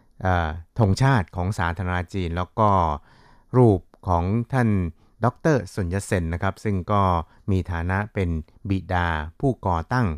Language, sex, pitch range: Thai, male, 90-105 Hz